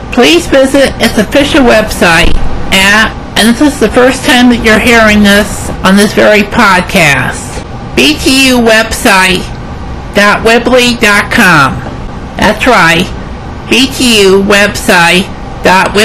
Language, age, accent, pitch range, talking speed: English, 60-79, American, 205-260 Hz, 85 wpm